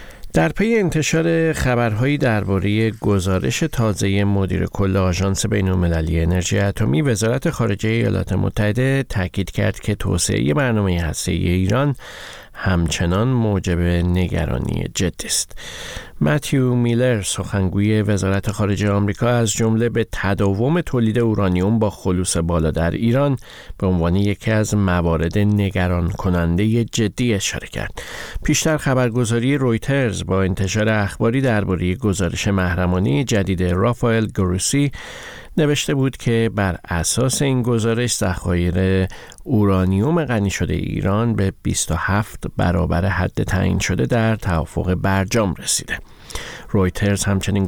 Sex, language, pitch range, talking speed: male, Persian, 90-115 Hz, 115 wpm